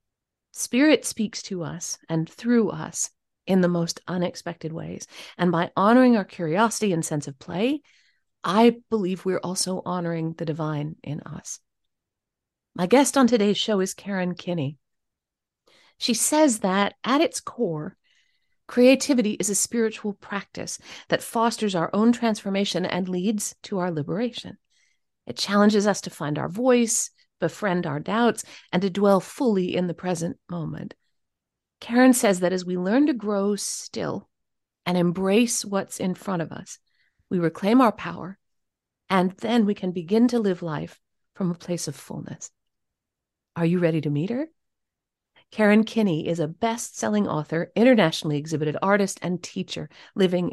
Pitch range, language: 170-225 Hz, English